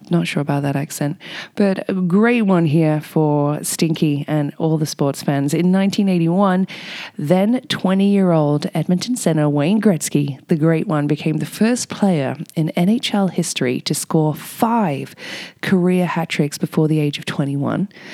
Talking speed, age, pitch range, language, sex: 155 wpm, 20-39, 150-195 Hz, English, female